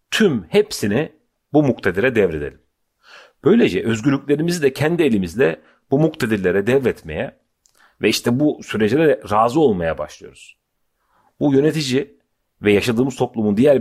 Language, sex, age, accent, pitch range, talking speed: Turkish, male, 40-59, native, 100-140 Hz, 115 wpm